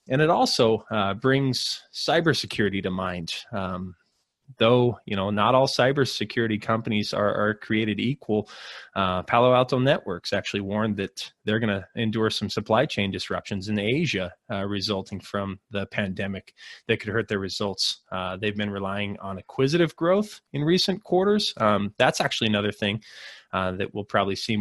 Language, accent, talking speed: English, American, 160 wpm